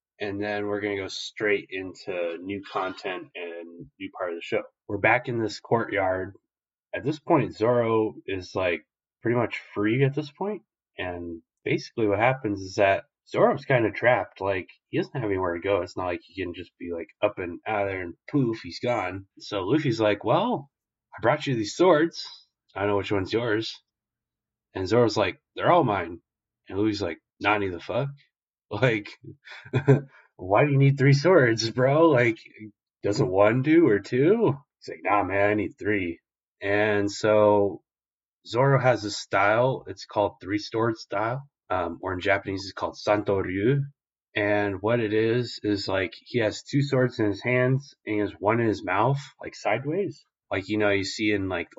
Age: 20-39